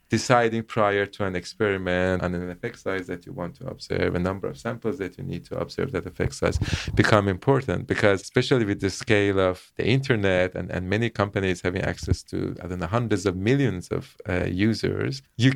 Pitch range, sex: 95-125 Hz, male